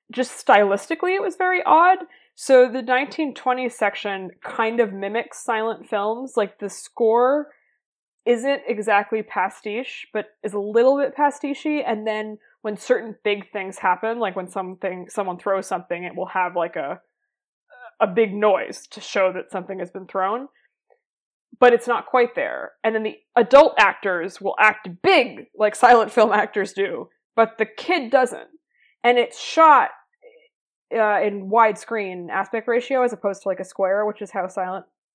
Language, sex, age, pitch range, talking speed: English, female, 20-39, 200-255 Hz, 160 wpm